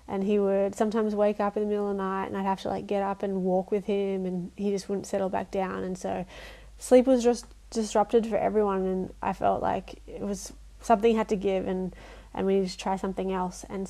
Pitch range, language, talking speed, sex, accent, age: 195-215 Hz, English, 240 wpm, female, Australian, 20-39